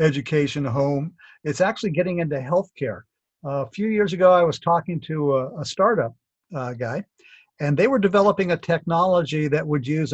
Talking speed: 180 wpm